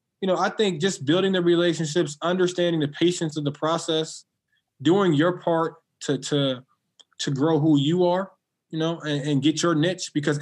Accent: American